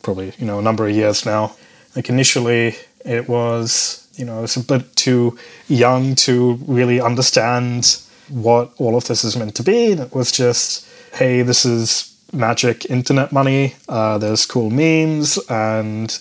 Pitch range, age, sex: 110-125 Hz, 20-39, male